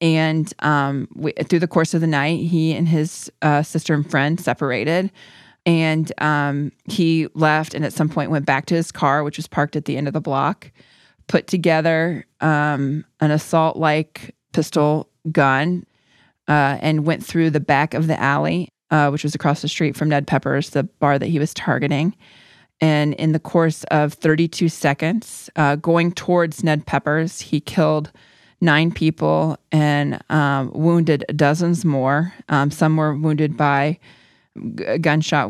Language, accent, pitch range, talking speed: English, American, 145-160 Hz, 165 wpm